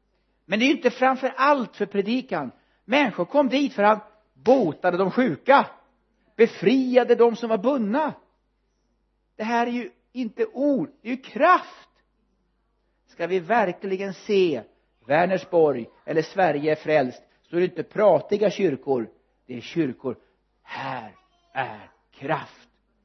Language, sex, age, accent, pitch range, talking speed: Swedish, male, 60-79, native, 150-225 Hz, 140 wpm